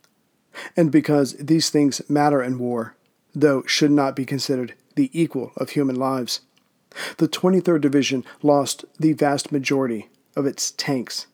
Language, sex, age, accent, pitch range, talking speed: English, male, 50-69, American, 135-155 Hz, 145 wpm